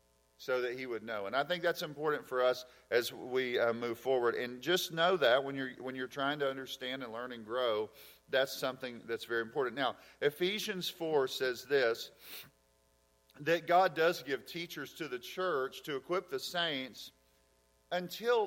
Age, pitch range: 40-59, 125-170 Hz